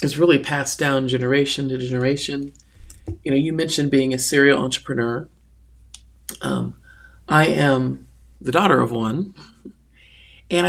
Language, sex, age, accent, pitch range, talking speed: English, male, 40-59, American, 125-150 Hz, 130 wpm